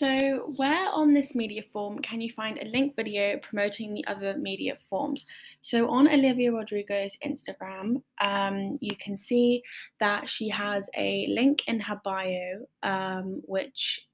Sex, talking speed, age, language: female, 155 wpm, 10-29, English